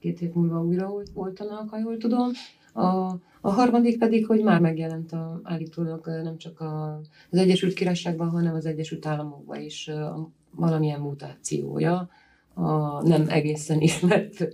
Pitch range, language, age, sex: 155-185 Hz, Hungarian, 30-49, female